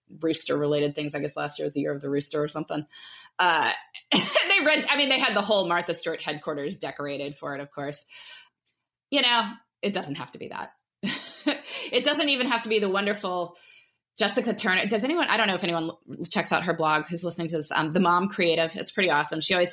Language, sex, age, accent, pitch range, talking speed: English, female, 20-39, American, 155-205 Hz, 225 wpm